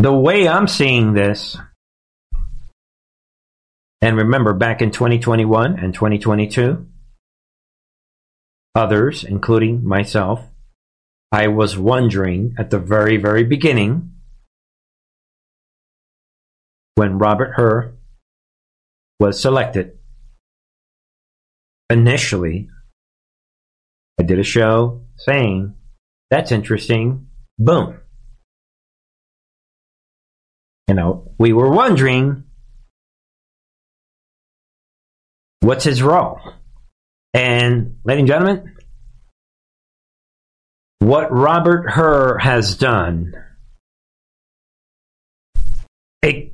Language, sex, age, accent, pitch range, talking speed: English, male, 50-69, American, 90-130 Hz, 70 wpm